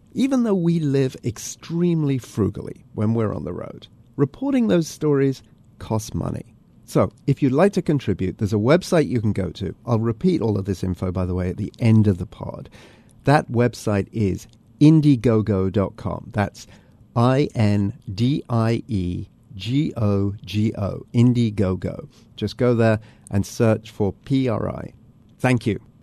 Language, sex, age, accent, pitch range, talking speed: English, male, 50-69, British, 105-140 Hz, 140 wpm